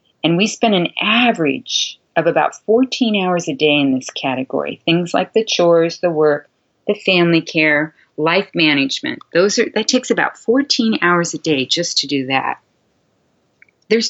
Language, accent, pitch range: English, American, 150-235 Hz